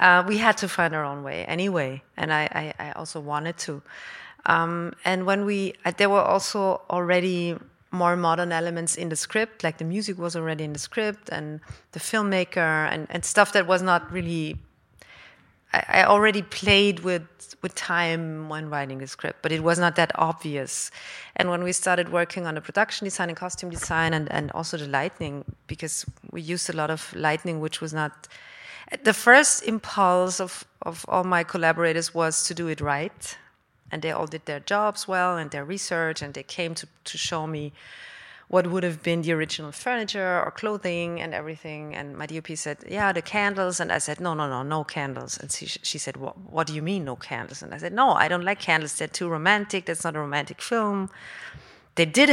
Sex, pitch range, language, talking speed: female, 160-195 Hz, English, 200 wpm